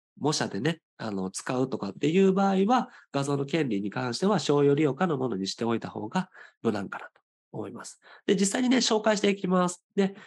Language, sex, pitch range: Japanese, male, 120-195 Hz